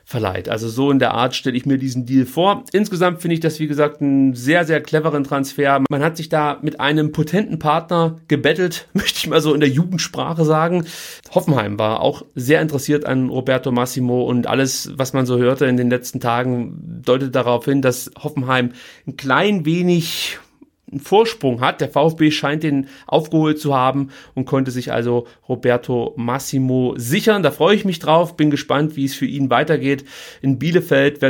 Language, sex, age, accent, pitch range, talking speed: German, male, 30-49, German, 125-165 Hz, 185 wpm